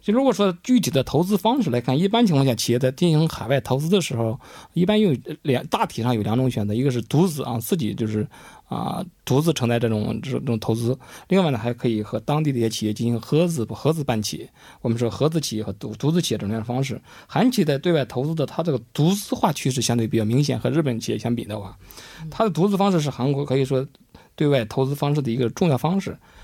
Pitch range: 120-165 Hz